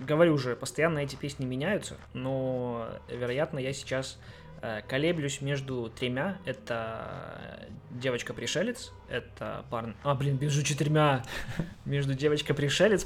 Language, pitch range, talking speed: Russian, 125-155 Hz, 120 wpm